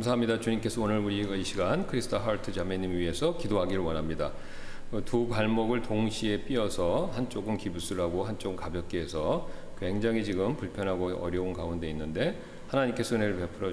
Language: English